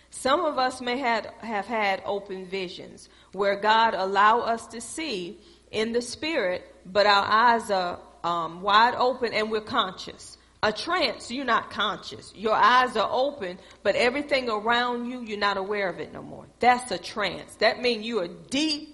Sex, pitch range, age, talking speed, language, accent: female, 200-265 Hz, 40-59, 175 wpm, English, American